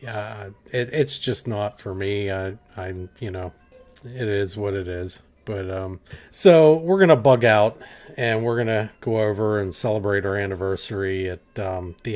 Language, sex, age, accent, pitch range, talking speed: English, male, 40-59, American, 100-130 Hz, 175 wpm